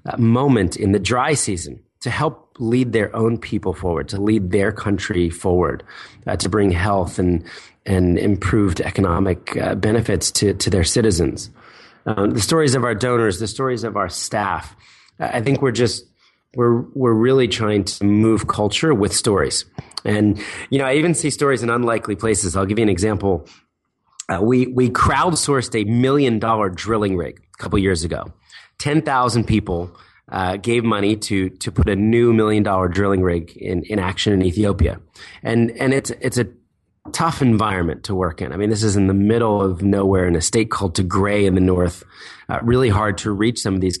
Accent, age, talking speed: American, 30-49, 190 wpm